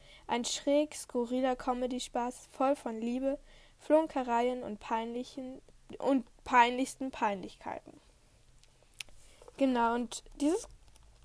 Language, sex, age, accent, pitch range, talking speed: German, female, 10-29, German, 235-295 Hz, 85 wpm